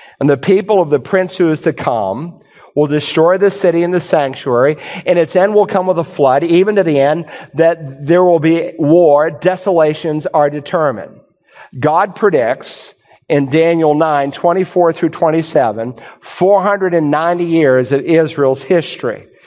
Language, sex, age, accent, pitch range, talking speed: English, male, 50-69, American, 150-185 Hz, 155 wpm